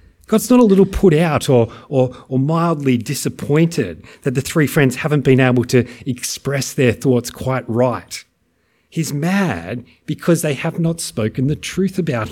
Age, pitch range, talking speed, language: 40-59, 115-170 Hz, 165 wpm, English